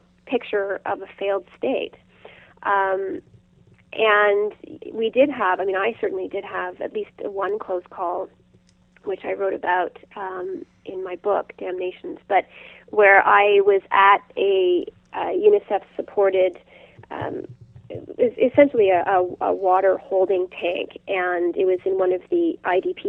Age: 30-49